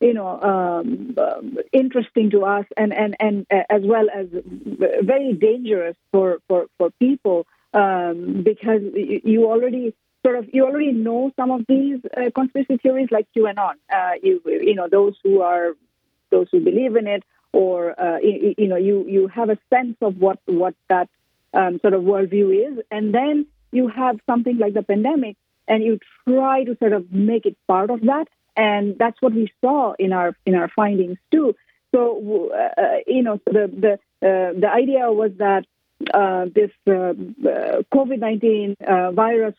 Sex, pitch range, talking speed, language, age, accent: female, 195-255 Hz, 170 wpm, English, 50-69, Indian